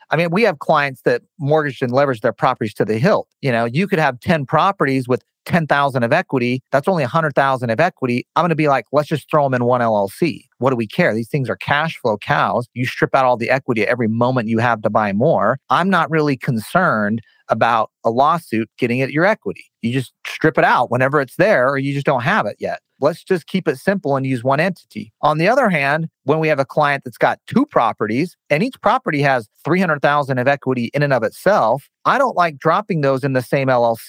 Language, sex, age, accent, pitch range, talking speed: English, male, 40-59, American, 120-155 Hz, 235 wpm